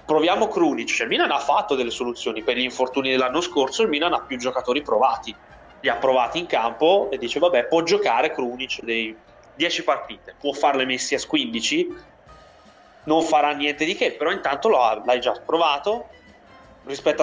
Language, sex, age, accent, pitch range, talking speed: Italian, male, 20-39, native, 120-150 Hz, 175 wpm